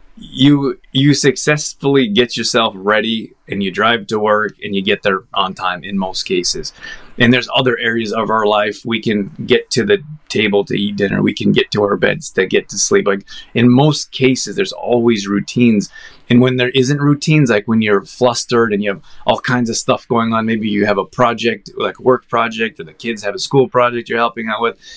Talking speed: 215 wpm